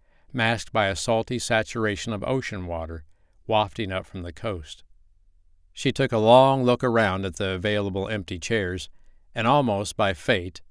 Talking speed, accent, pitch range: 155 wpm, American, 85-115 Hz